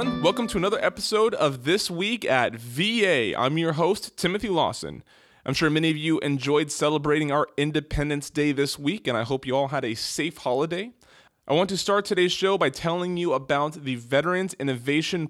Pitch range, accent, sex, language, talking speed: 130-165 Hz, American, male, English, 190 wpm